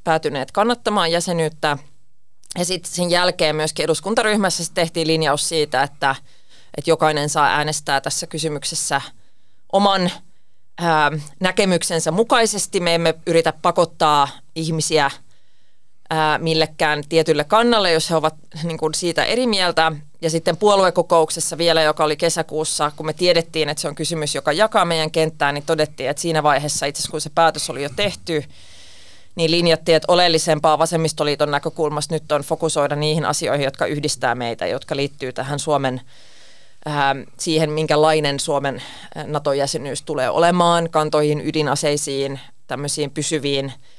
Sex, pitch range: female, 145-170 Hz